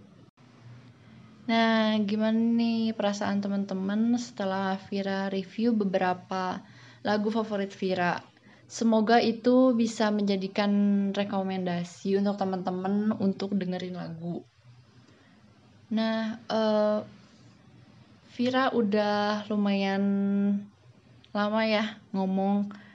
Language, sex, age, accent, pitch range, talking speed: Indonesian, female, 20-39, native, 190-215 Hz, 80 wpm